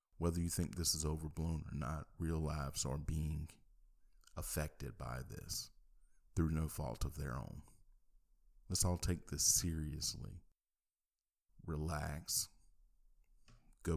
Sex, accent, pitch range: male, American, 75-90 Hz